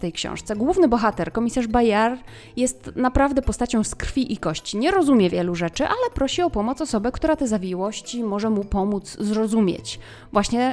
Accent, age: native, 20-39